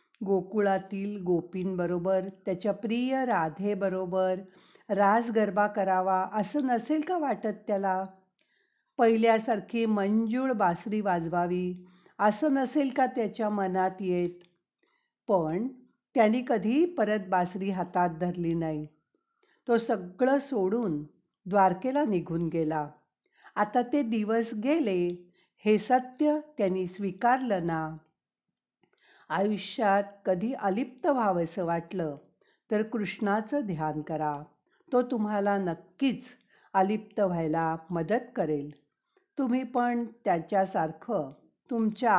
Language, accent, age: Marathi, native, 50-69